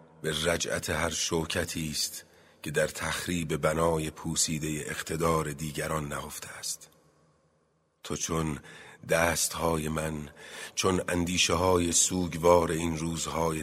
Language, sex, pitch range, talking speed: Persian, male, 75-85 Hz, 105 wpm